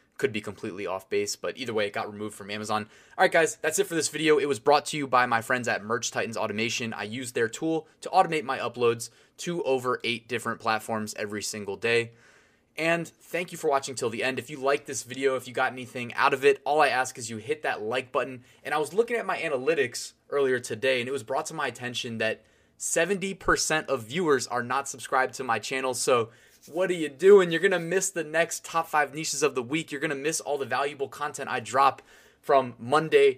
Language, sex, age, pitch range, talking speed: English, male, 20-39, 120-170 Hz, 240 wpm